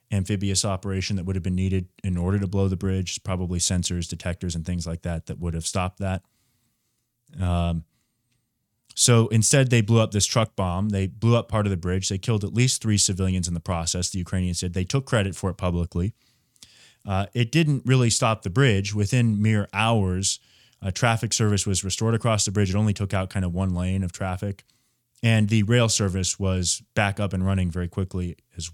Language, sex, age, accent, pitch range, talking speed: English, male, 20-39, American, 95-115 Hz, 210 wpm